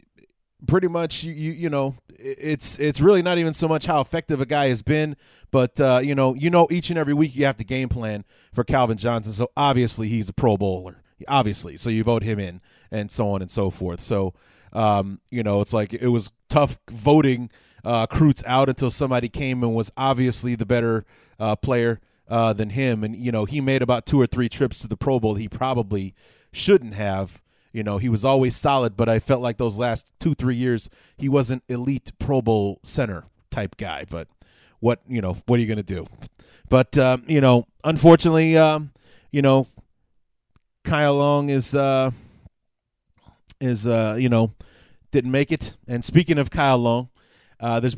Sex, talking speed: male, 200 wpm